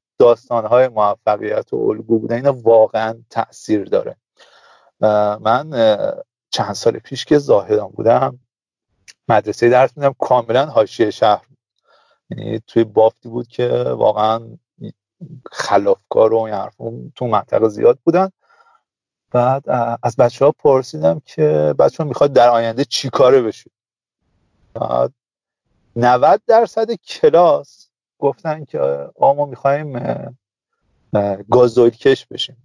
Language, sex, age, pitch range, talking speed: Persian, male, 40-59, 115-175 Hz, 110 wpm